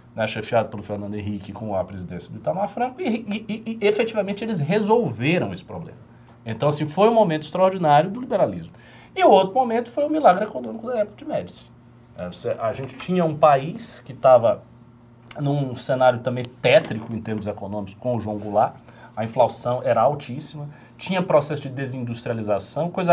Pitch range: 115-180 Hz